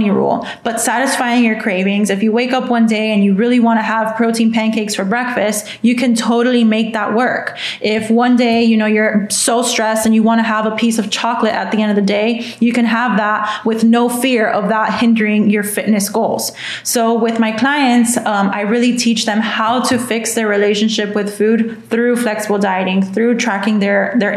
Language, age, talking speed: English, 20-39, 210 wpm